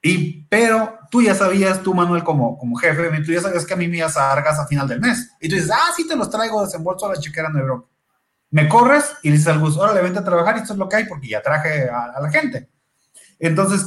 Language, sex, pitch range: Spanish, male, 145-180 Hz